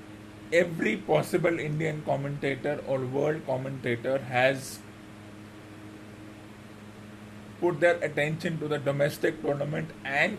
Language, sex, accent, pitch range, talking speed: English, male, Indian, 105-165 Hz, 90 wpm